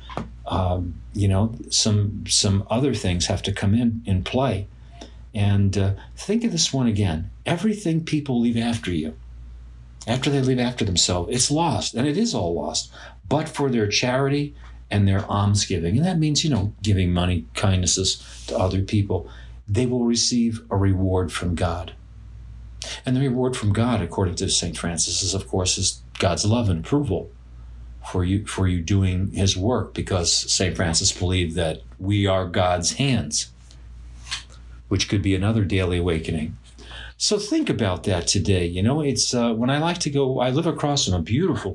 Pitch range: 85-110 Hz